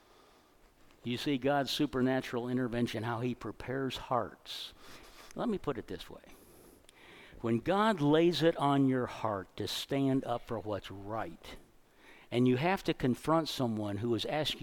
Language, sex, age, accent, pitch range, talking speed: English, male, 60-79, American, 125-185 Hz, 150 wpm